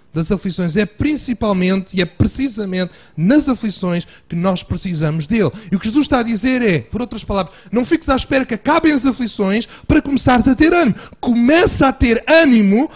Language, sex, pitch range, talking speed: Portuguese, male, 145-225 Hz, 190 wpm